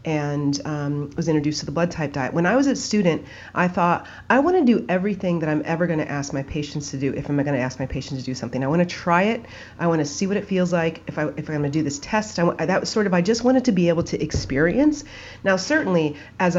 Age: 30-49